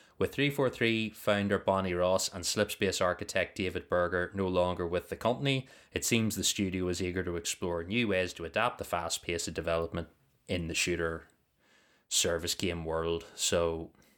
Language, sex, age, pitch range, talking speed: English, male, 20-39, 95-120 Hz, 165 wpm